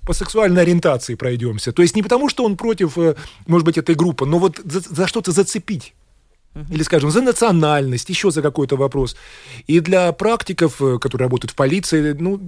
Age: 20-39